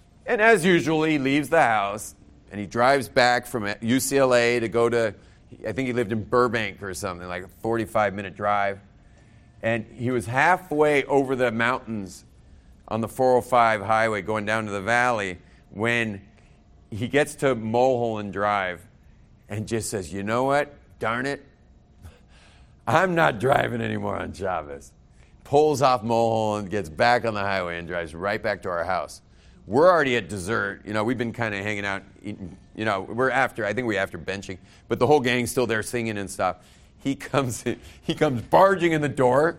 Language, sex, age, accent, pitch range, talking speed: English, male, 40-59, American, 100-135 Hz, 180 wpm